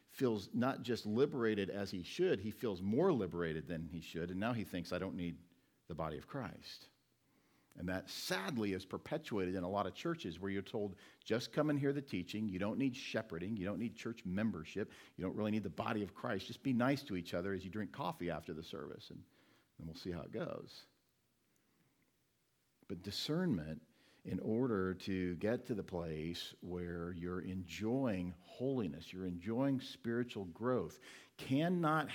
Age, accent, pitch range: 50-69, American, 90-130 Hz